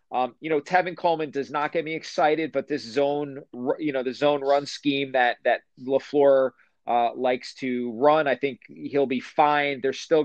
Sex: male